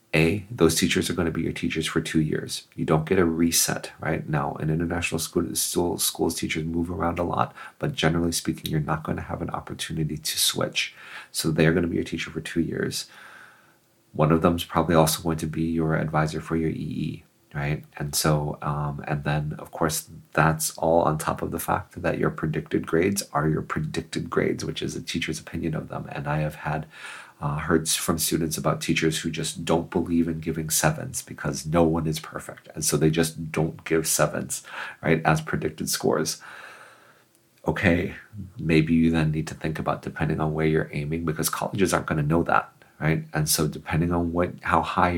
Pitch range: 75-85 Hz